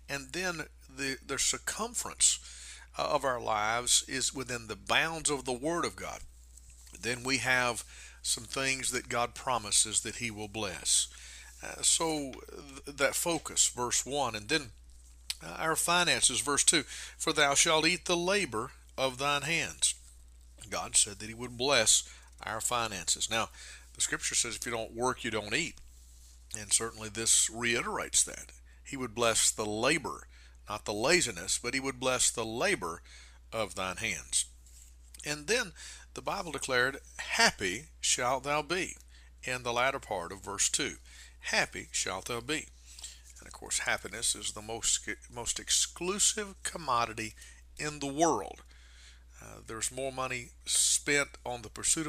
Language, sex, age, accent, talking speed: English, male, 50-69, American, 155 wpm